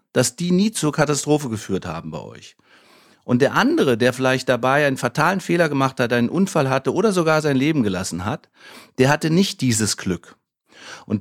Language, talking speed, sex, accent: German, 185 wpm, male, German